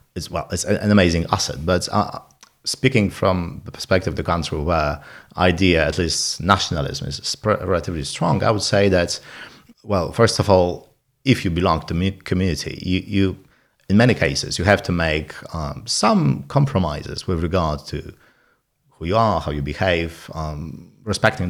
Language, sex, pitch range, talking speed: English, male, 80-105 Hz, 165 wpm